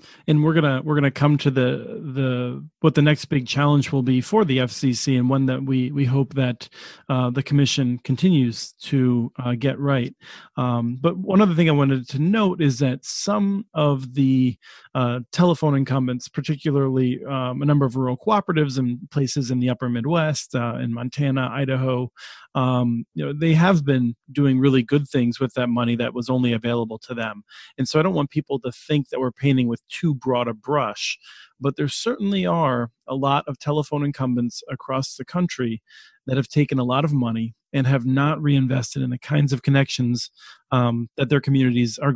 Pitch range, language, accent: 125-145 Hz, English, American